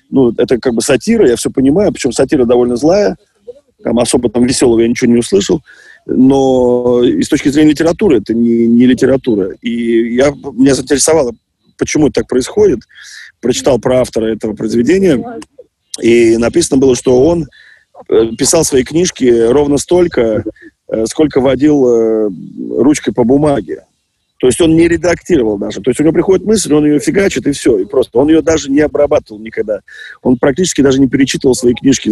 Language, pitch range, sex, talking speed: Russian, 115-160 Hz, male, 170 wpm